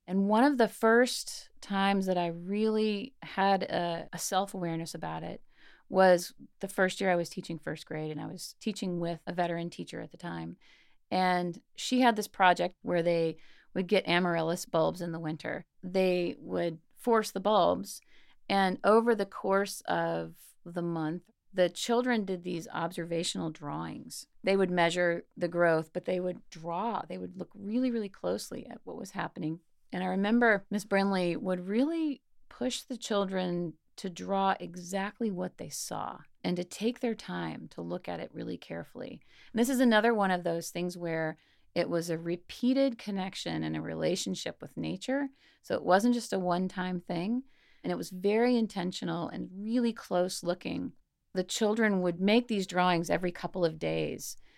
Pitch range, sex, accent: 170-215 Hz, female, American